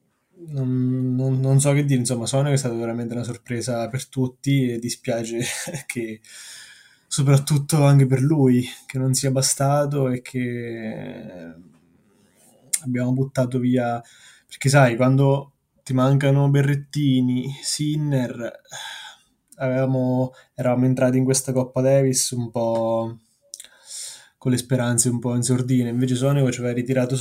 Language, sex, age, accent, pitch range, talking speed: Italian, male, 20-39, native, 120-140 Hz, 130 wpm